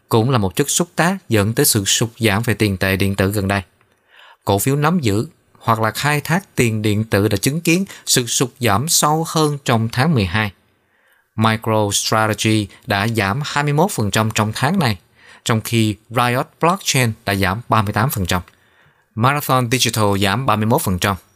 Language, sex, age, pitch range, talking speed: Vietnamese, male, 20-39, 105-135 Hz, 165 wpm